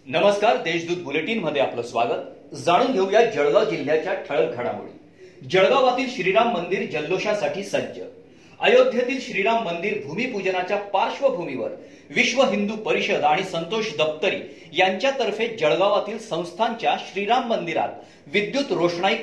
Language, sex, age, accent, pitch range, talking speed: Marathi, male, 40-59, native, 170-225 Hz, 75 wpm